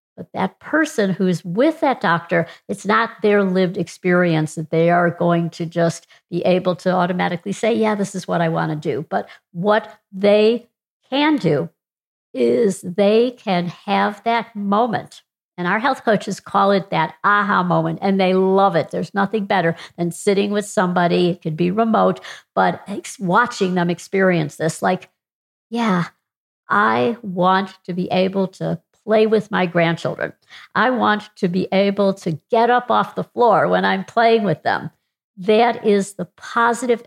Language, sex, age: English, female, 60-79